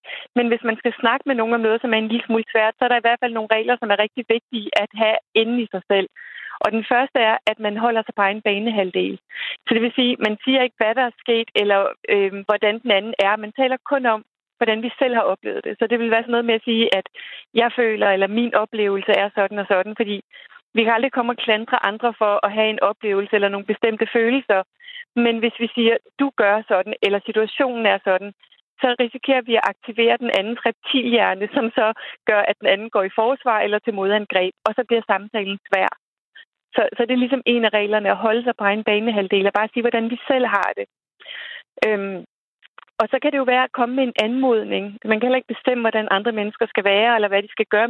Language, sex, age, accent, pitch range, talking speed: Danish, female, 30-49, native, 205-240 Hz, 240 wpm